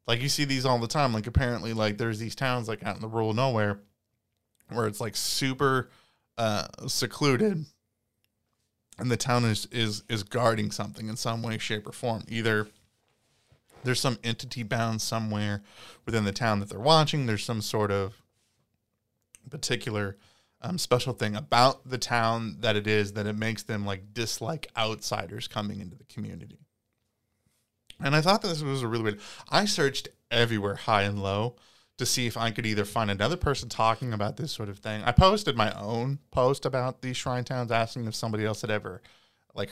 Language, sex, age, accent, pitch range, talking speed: English, male, 20-39, American, 105-125 Hz, 185 wpm